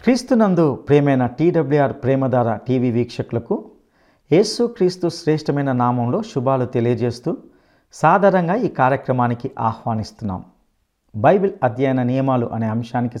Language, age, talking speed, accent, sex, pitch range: Telugu, 50-69, 100 wpm, native, male, 125-175 Hz